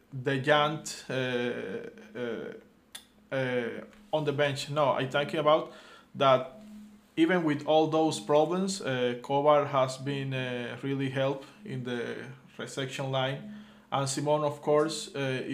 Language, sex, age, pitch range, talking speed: English, male, 20-39, 135-155 Hz, 130 wpm